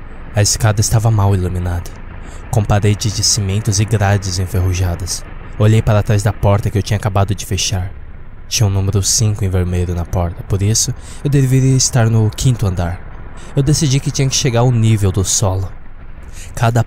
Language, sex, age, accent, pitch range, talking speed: Portuguese, male, 20-39, Brazilian, 95-115 Hz, 180 wpm